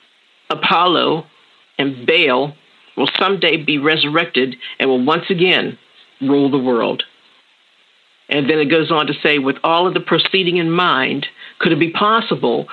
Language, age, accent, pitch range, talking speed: English, 50-69, American, 145-185 Hz, 150 wpm